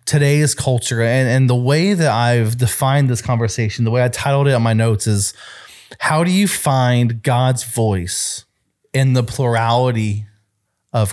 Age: 20-39